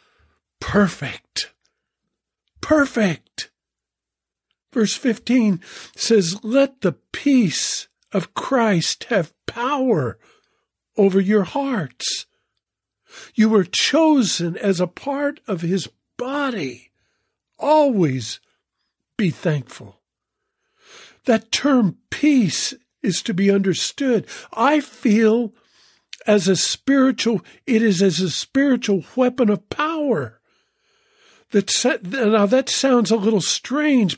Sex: male